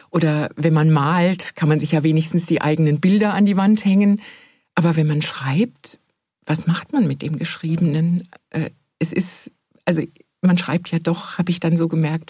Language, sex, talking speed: German, female, 185 wpm